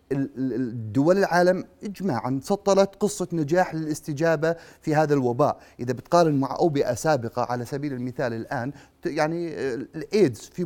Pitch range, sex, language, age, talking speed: 125-150 Hz, male, Arabic, 30-49, 125 wpm